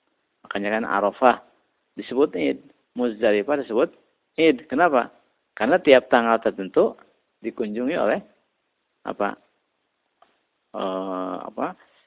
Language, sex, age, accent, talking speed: Indonesian, male, 50-69, native, 90 wpm